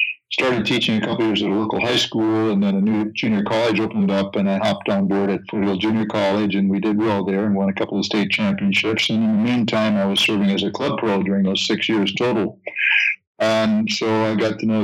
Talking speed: 250 wpm